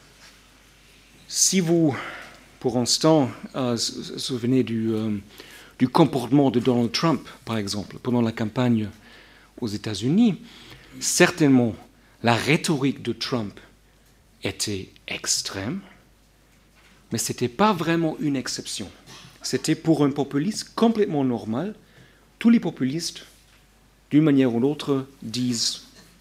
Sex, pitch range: male, 115-150 Hz